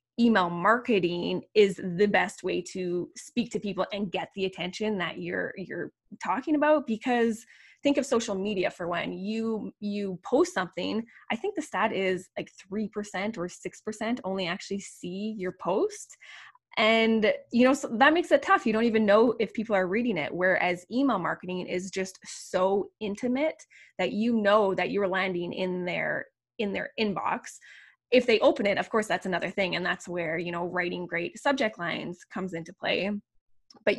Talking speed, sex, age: 180 wpm, female, 20-39